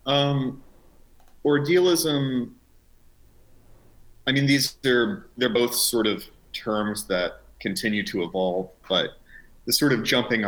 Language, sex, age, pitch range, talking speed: English, male, 30-49, 95-125 Hz, 115 wpm